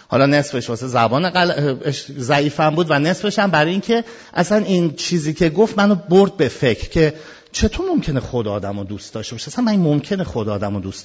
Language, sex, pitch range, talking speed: Persian, male, 125-200 Hz, 200 wpm